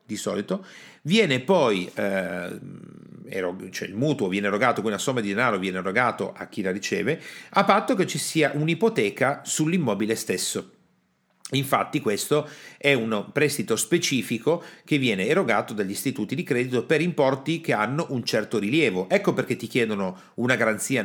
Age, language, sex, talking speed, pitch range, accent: 40-59, Italian, male, 155 wpm, 110-150 Hz, native